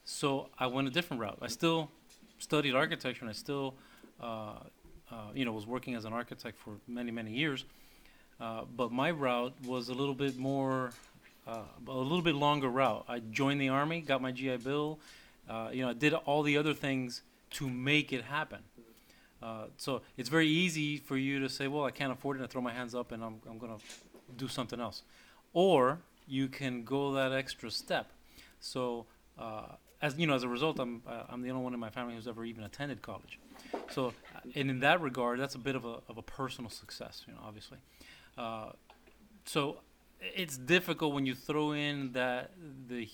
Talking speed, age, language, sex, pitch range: 200 wpm, 30-49, English, male, 120-140 Hz